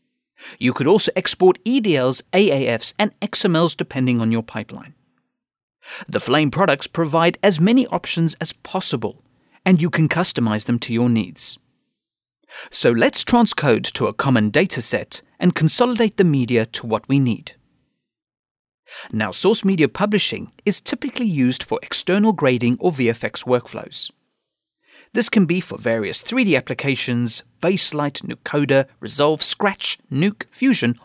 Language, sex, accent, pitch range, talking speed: English, male, British, 125-205 Hz, 135 wpm